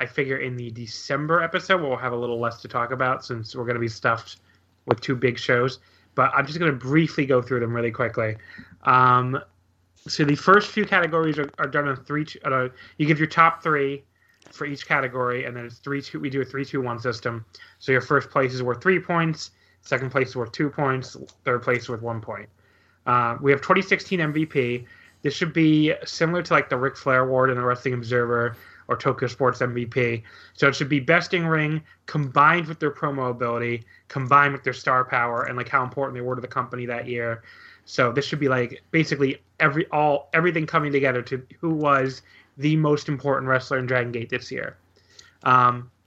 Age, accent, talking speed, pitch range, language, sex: 30-49, American, 210 wpm, 120-150 Hz, English, male